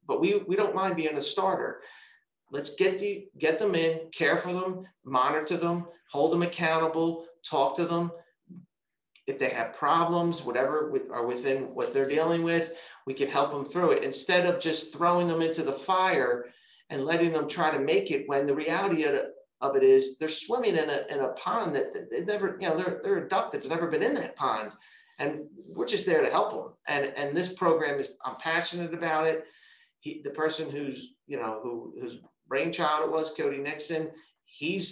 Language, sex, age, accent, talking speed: English, male, 40-59, American, 200 wpm